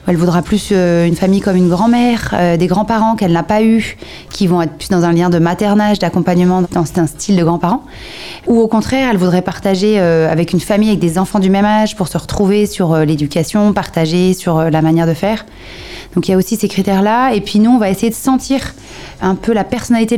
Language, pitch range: French, 175-210 Hz